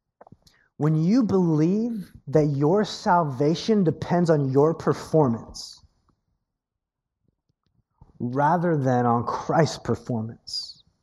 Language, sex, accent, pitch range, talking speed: English, male, American, 120-175 Hz, 80 wpm